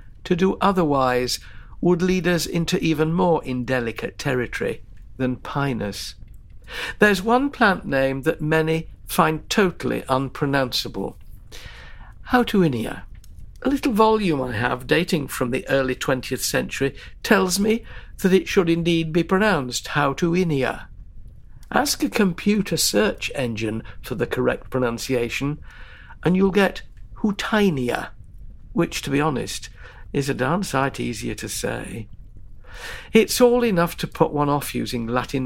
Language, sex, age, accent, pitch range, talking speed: English, male, 60-79, British, 125-185 Hz, 130 wpm